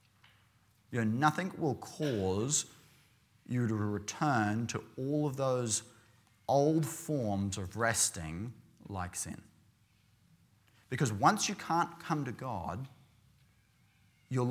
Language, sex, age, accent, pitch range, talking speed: English, male, 30-49, Australian, 105-130 Hz, 110 wpm